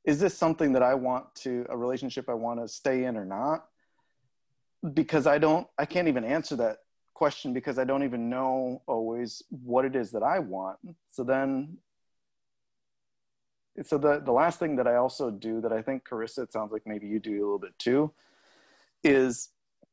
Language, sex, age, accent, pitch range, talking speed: English, male, 30-49, American, 120-145 Hz, 190 wpm